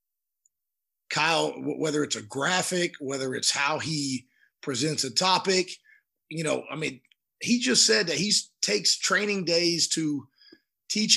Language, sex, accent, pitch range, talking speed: English, male, American, 140-185 Hz, 140 wpm